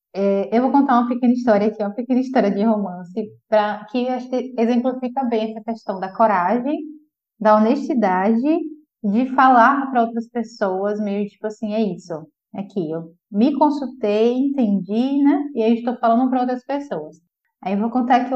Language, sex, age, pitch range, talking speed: Portuguese, female, 10-29, 215-270 Hz, 170 wpm